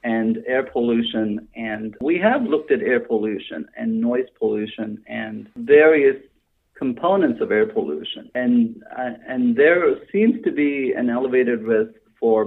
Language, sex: English, male